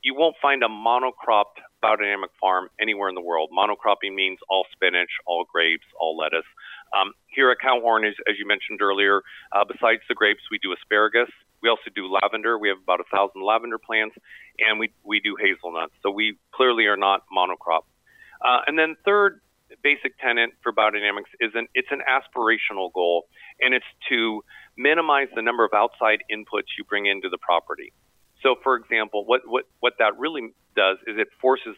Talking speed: 180 wpm